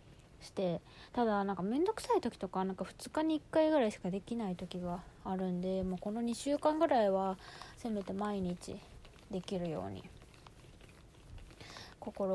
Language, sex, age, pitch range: Japanese, female, 20-39, 185-230 Hz